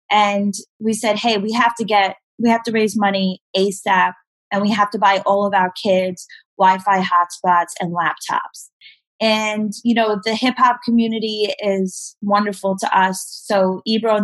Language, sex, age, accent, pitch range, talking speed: English, female, 20-39, American, 195-220 Hz, 175 wpm